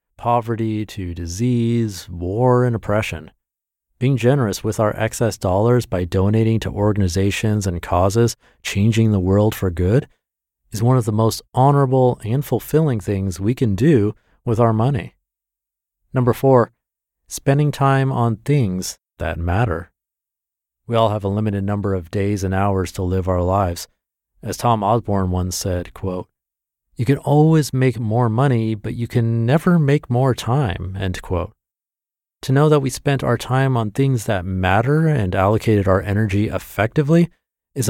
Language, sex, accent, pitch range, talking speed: English, male, American, 95-125 Hz, 155 wpm